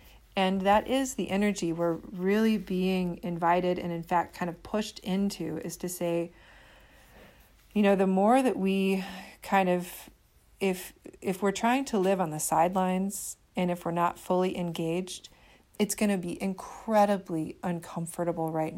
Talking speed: 155 wpm